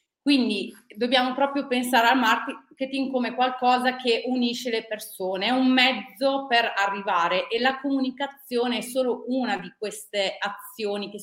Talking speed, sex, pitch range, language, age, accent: 145 wpm, female, 190-245 Hz, Italian, 30-49, native